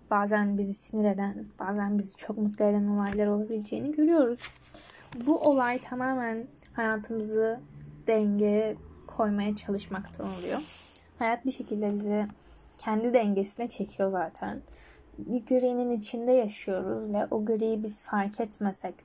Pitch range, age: 205-240 Hz, 10-29